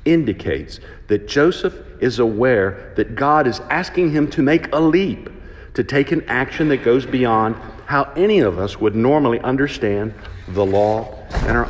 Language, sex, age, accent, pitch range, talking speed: English, male, 60-79, American, 100-135 Hz, 165 wpm